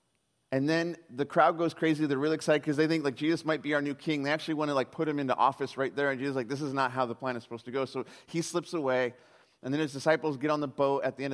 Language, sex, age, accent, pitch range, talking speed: English, male, 30-49, American, 135-175 Hz, 310 wpm